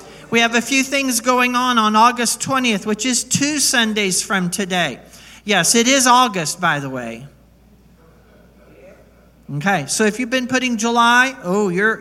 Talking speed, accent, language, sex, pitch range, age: 160 wpm, American, English, male, 195-235 Hz, 50-69